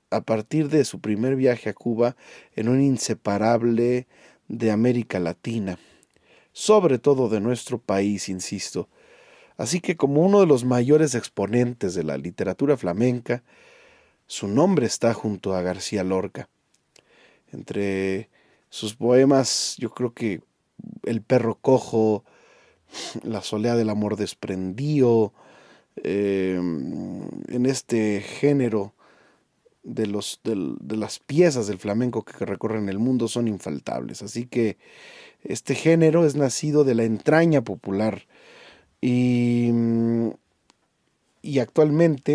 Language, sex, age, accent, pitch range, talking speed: Spanish, male, 40-59, Mexican, 105-135 Hz, 115 wpm